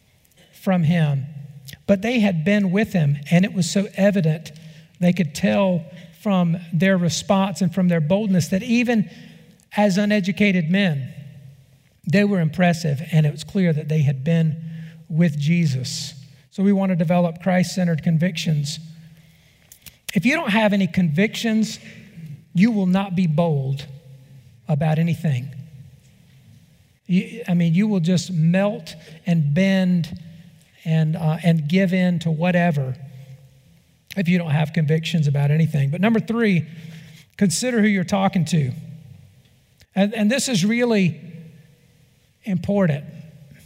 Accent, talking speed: American, 135 wpm